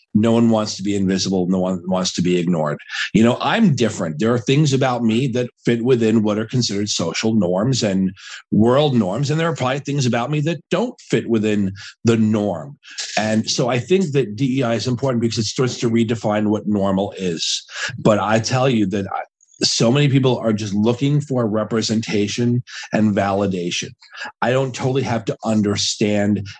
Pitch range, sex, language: 100-120 Hz, male, English